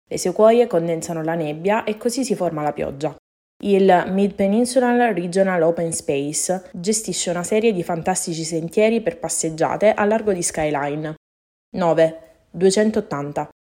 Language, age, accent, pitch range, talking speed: Italian, 20-39, native, 160-195 Hz, 130 wpm